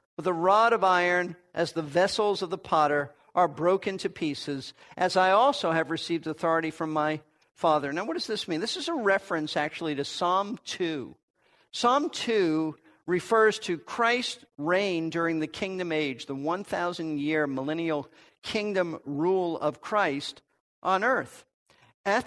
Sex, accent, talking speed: male, American, 155 wpm